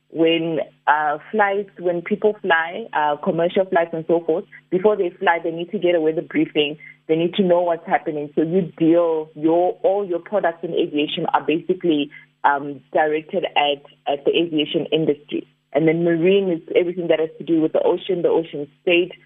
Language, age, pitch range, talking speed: English, 30-49, 160-190 Hz, 190 wpm